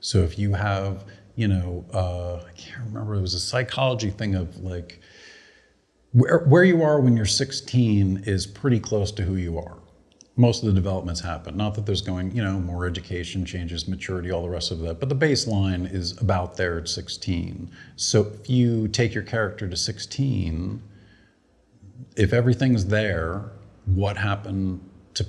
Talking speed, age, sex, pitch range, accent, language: 175 wpm, 50-69, male, 90-110 Hz, American, English